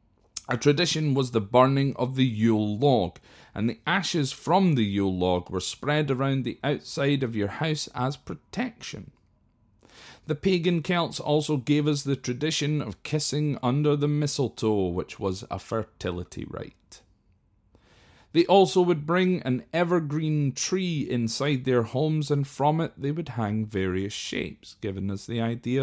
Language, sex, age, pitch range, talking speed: English, male, 30-49, 105-150 Hz, 155 wpm